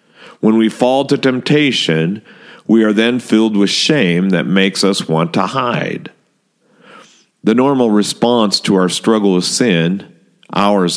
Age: 50-69